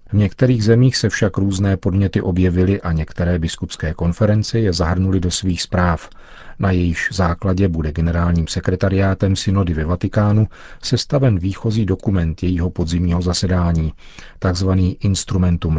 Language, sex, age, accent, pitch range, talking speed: Czech, male, 40-59, native, 85-105 Hz, 130 wpm